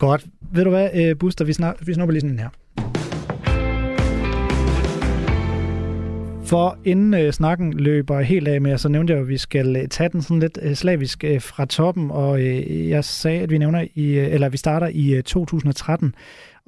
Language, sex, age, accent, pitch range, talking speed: Danish, male, 30-49, native, 130-165 Hz, 180 wpm